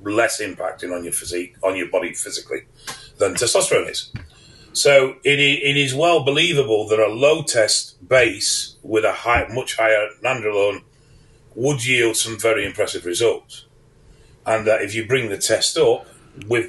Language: English